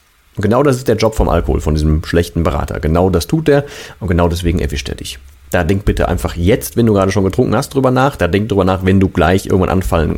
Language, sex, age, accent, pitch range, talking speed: German, male, 40-59, German, 85-110 Hz, 255 wpm